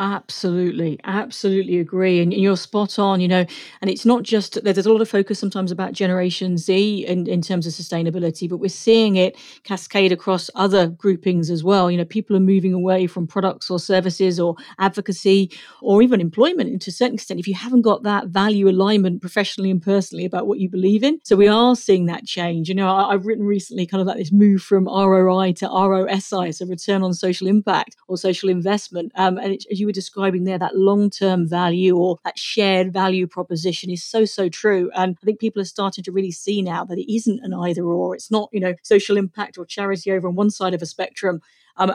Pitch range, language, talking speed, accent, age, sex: 180-200 Hz, English, 215 wpm, British, 40-59, female